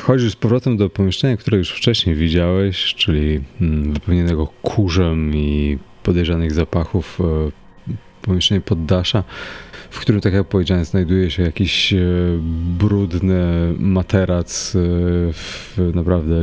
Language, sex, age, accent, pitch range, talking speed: Polish, male, 30-49, native, 85-100 Hz, 105 wpm